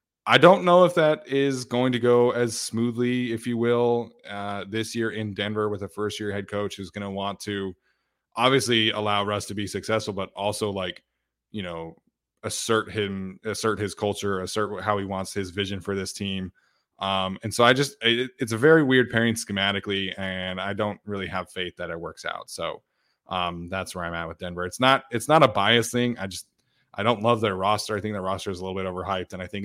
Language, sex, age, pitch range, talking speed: English, male, 20-39, 95-115 Hz, 225 wpm